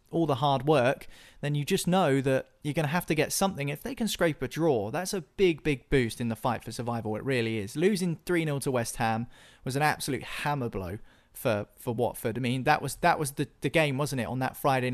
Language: English